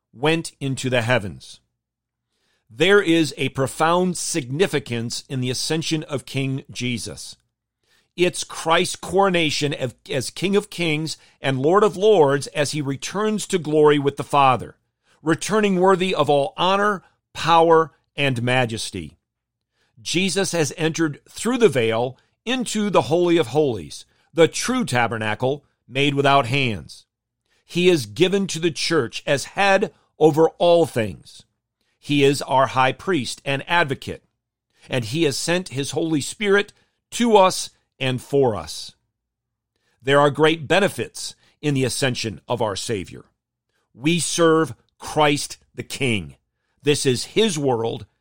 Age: 50-69